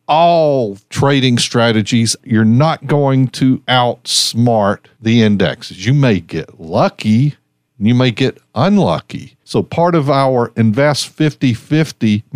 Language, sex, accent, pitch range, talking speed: English, male, American, 115-150 Hz, 120 wpm